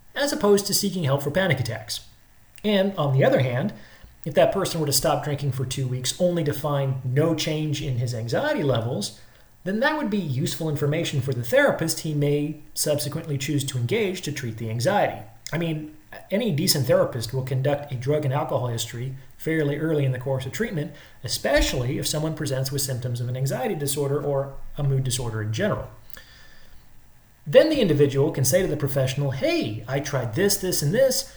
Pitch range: 130-165 Hz